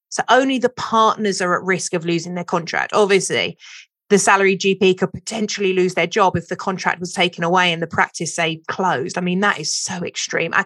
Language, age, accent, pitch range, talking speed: English, 30-49, British, 180-210 Hz, 215 wpm